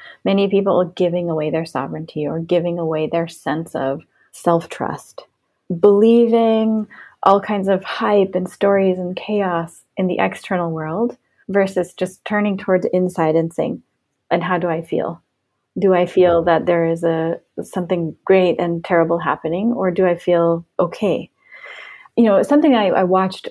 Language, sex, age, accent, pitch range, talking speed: English, female, 30-49, American, 170-215 Hz, 160 wpm